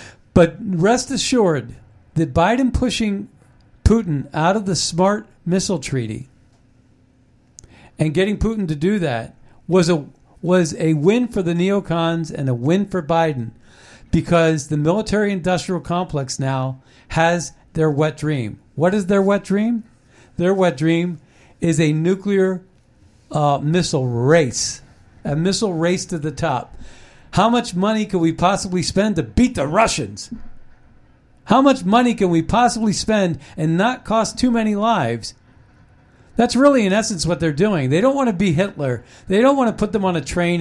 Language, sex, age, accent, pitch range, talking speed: English, male, 50-69, American, 140-200 Hz, 160 wpm